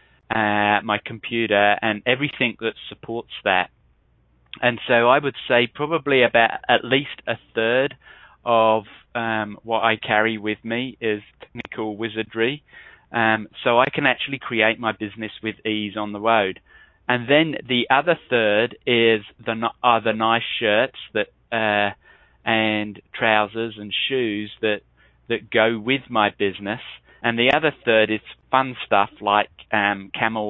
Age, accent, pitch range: 20-39, British, 105-115 Hz